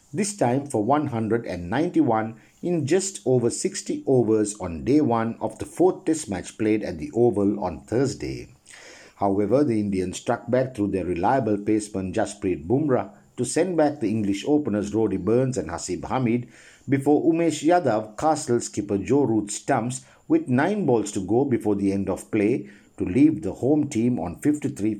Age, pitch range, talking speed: 60-79, 105-145 Hz, 170 wpm